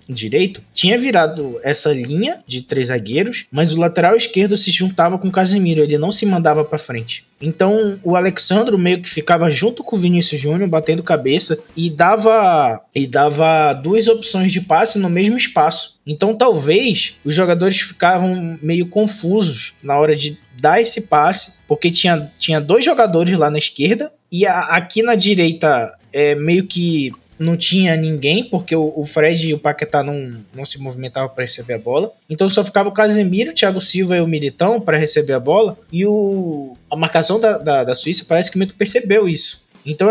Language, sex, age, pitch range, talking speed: Portuguese, male, 20-39, 150-200 Hz, 185 wpm